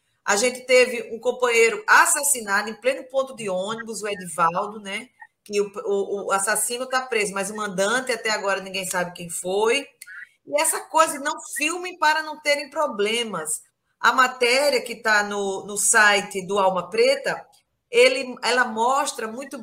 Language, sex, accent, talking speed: Portuguese, female, Brazilian, 155 wpm